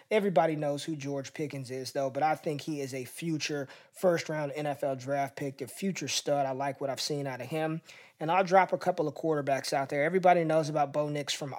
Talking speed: 230 wpm